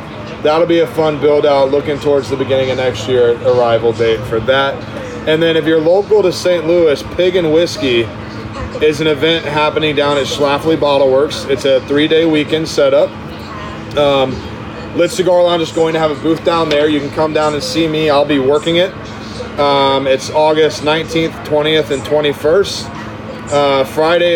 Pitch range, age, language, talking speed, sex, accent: 120-160 Hz, 30-49, English, 185 wpm, male, American